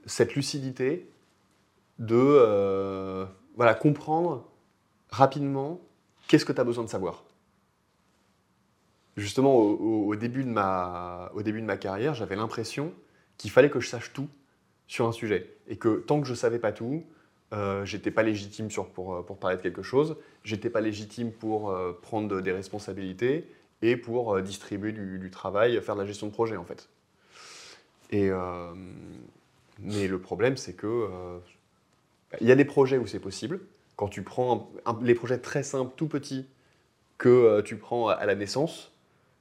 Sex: male